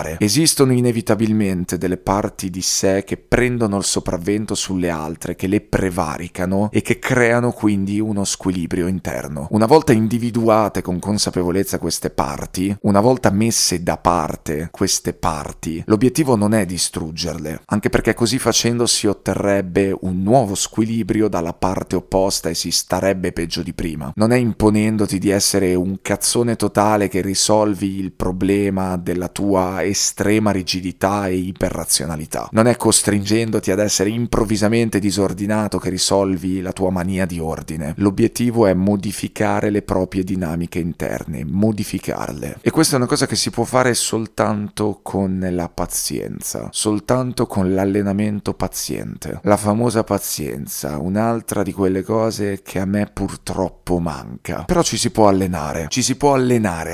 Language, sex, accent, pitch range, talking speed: Italian, male, native, 90-110 Hz, 145 wpm